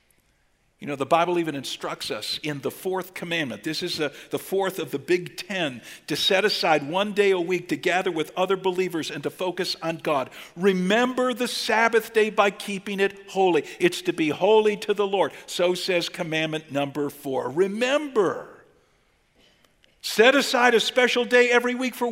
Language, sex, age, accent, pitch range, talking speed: English, male, 50-69, American, 155-205 Hz, 175 wpm